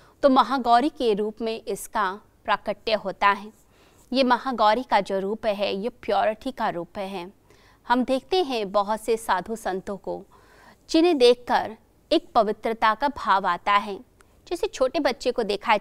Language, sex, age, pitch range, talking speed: Hindi, female, 30-49, 195-260 Hz, 155 wpm